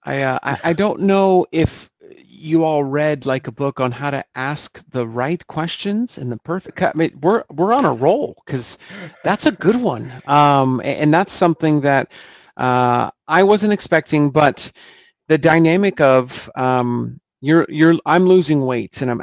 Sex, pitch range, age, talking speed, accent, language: male, 125-155 Hz, 40-59, 180 wpm, American, English